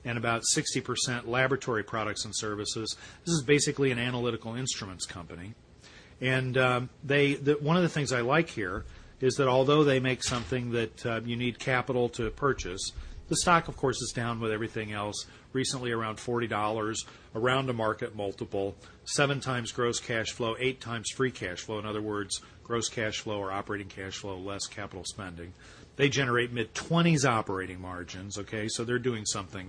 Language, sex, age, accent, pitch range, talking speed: English, male, 40-59, American, 105-130 Hz, 180 wpm